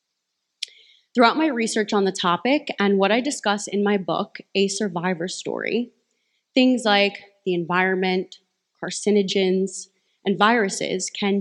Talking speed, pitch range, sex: 125 wpm, 185-230 Hz, female